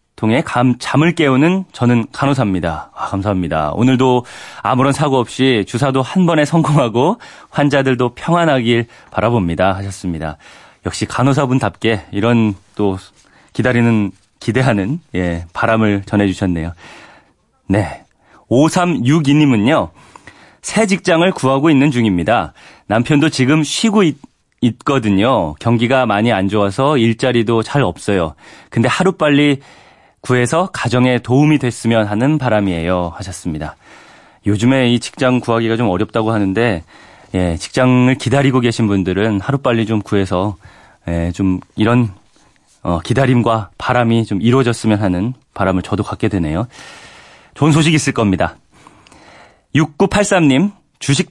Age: 30-49